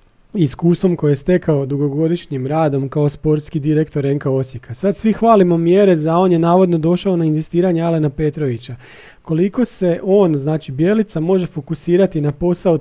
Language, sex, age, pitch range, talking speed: Croatian, male, 40-59, 145-180 Hz, 155 wpm